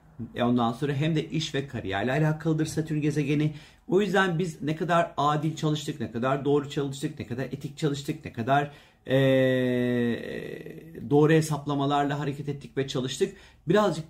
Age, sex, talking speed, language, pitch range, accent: 40-59, male, 150 wpm, Turkish, 130-160 Hz, native